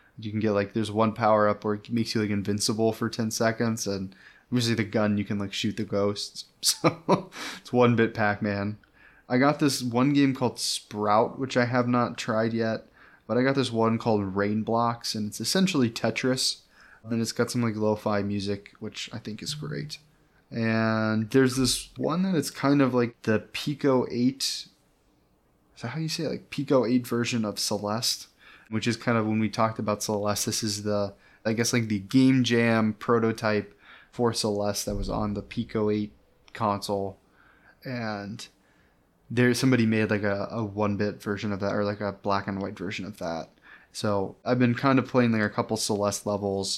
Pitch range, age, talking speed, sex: 105-125 Hz, 20-39, 190 wpm, male